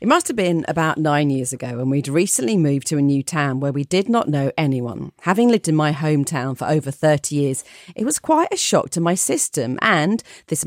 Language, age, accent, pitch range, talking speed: English, 40-59, British, 140-175 Hz, 230 wpm